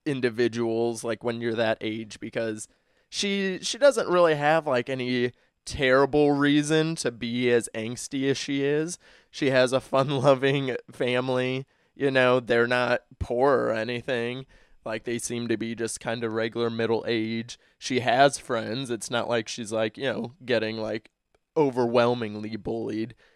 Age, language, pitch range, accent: 20-39, English, 110-135 Hz, American